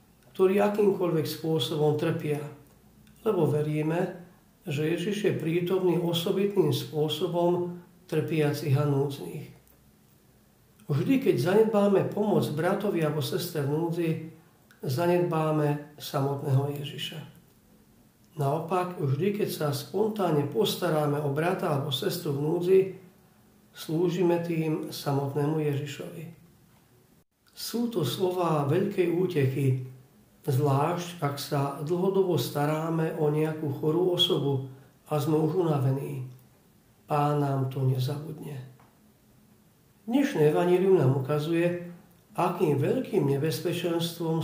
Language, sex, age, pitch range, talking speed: Slovak, male, 50-69, 145-175 Hz, 95 wpm